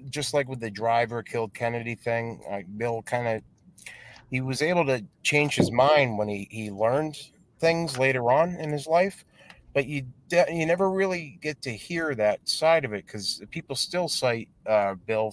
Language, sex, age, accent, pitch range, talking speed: English, male, 30-49, American, 105-145 Hz, 190 wpm